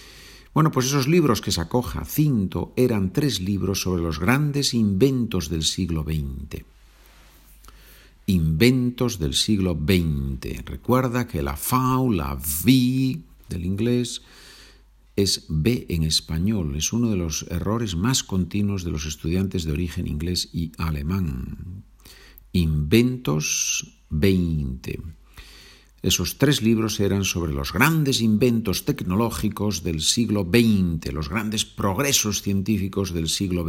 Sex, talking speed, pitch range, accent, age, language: male, 125 wpm, 75-110 Hz, Spanish, 50-69, Spanish